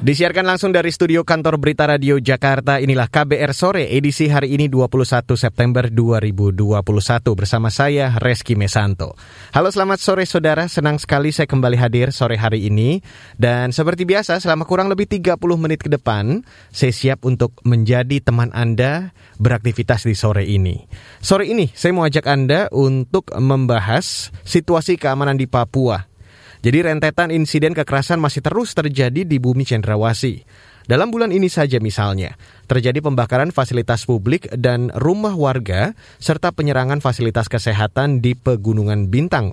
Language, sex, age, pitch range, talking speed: Indonesian, male, 20-39, 115-155 Hz, 145 wpm